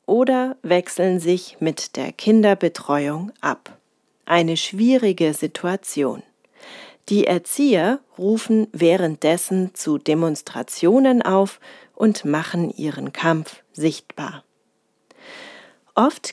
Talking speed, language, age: 85 wpm, German, 40-59